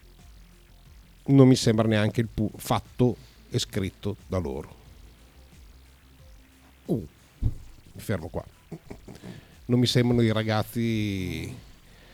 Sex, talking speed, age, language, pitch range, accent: male, 100 wpm, 50-69, Italian, 95-130 Hz, native